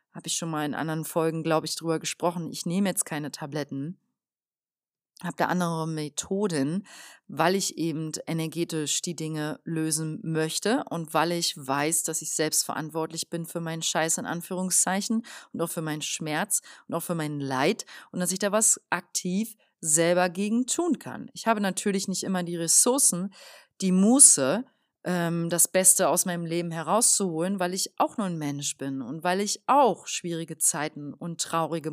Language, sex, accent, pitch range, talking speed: German, female, German, 160-195 Hz, 175 wpm